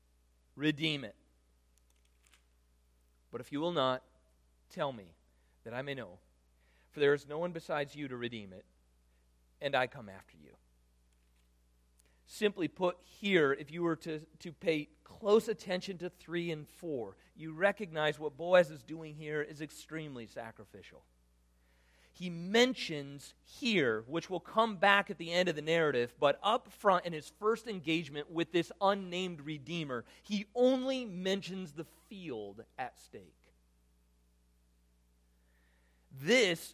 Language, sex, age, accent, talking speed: English, male, 40-59, American, 140 wpm